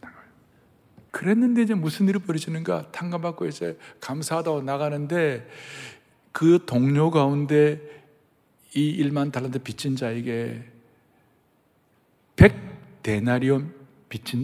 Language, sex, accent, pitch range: Korean, male, native, 120-175 Hz